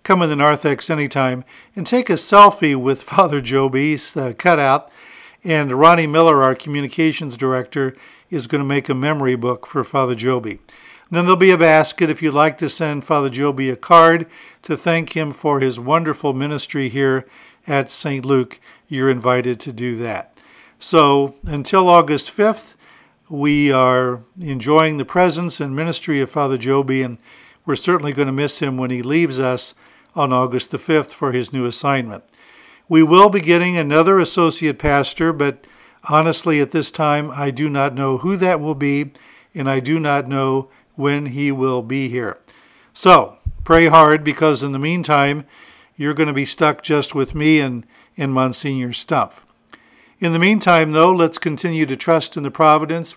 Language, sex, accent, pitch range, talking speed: English, male, American, 135-165 Hz, 175 wpm